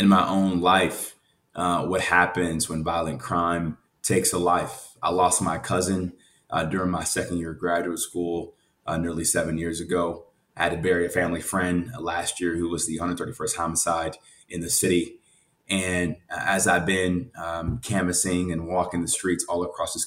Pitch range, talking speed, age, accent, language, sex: 85-100 Hz, 180 wpm, 20-39, American, English, male